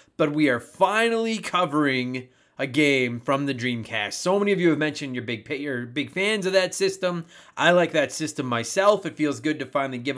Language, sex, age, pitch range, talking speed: English, male, 30-49, 140-200 Hz, 210 wpm